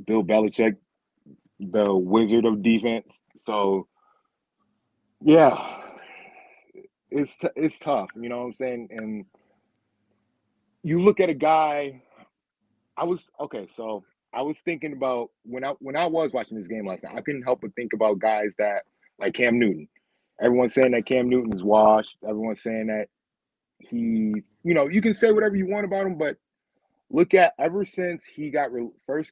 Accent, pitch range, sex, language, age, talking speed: American, 115-145 Hz, male, English, 20-39, 165 wpm